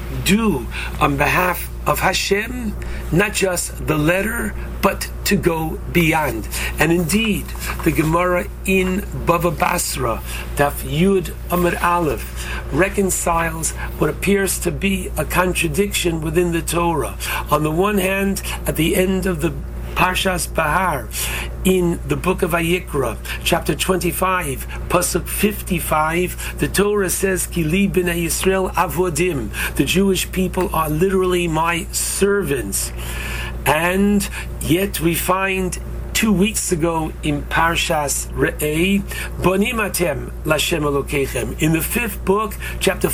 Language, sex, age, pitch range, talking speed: English, male, 60-79, 155-190 Hz, 120 wpm